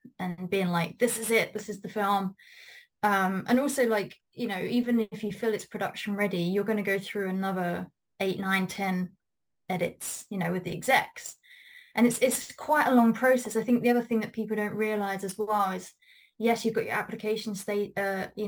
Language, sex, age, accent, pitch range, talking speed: English, female, 20-39, British, 190-225 Hz, 210 wpm